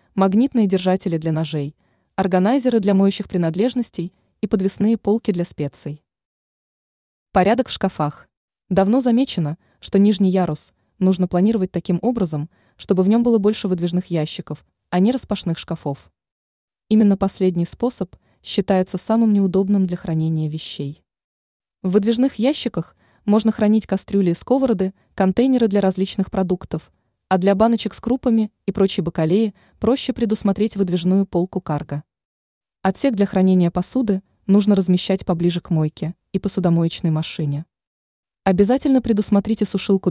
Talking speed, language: 125 wpm, Russian